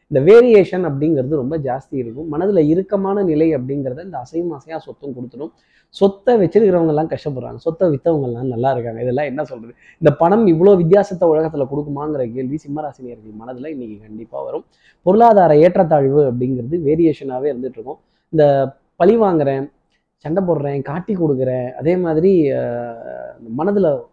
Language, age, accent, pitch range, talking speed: Tamil, 20-39, native, 130-180 Hz, 130 wpm